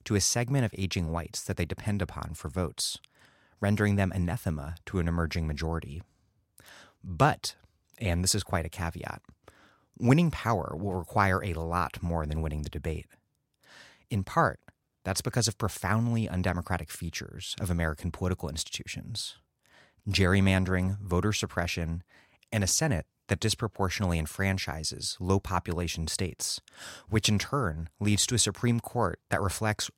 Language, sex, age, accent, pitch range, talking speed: English, male, 30-49, American, 85-105 Hz, 140 wpm